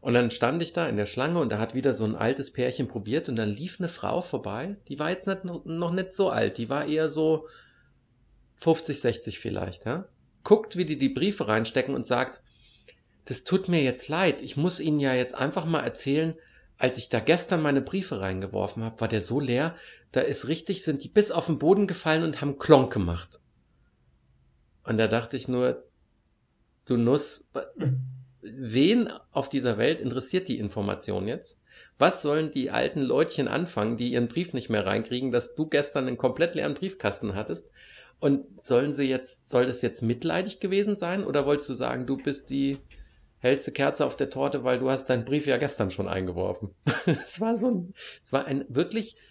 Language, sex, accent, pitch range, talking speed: German, male, German, 115-160 Hz, 190 wpm